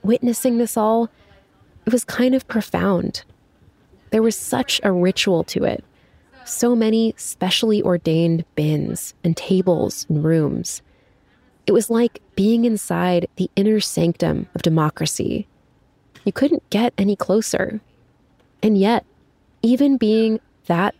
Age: 20-39